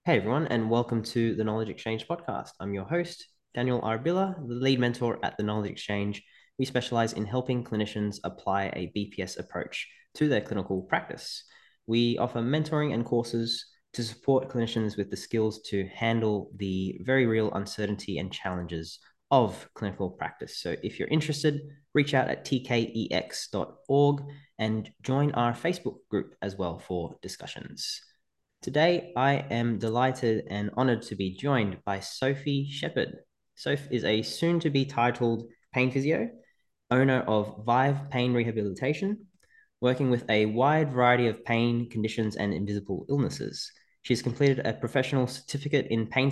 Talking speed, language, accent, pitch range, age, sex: 150 wpm, English, Australian, 105-140 Hz, 20-39, male